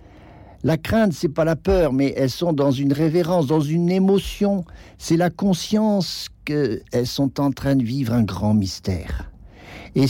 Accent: French